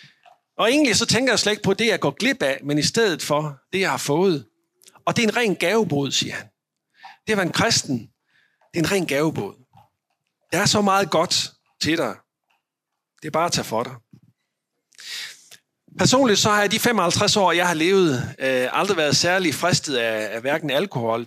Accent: native